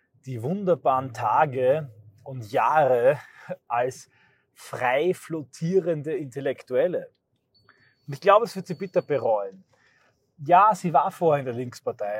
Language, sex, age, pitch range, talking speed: German, male, 30-49, 130-175 Hz, 120 wpm